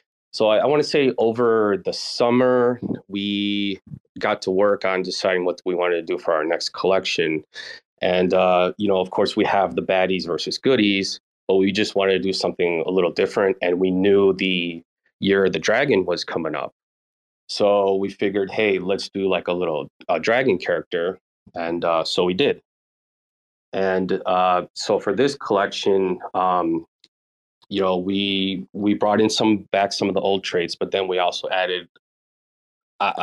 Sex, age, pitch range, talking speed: male, 30-49, 90-100 Hz, 180 wpm